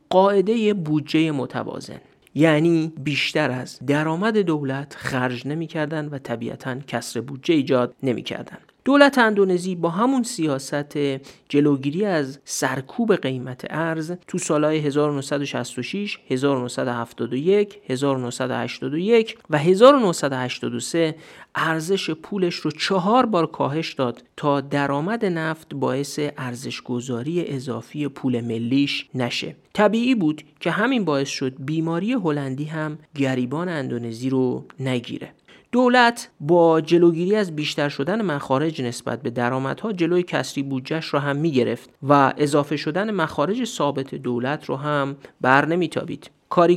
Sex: male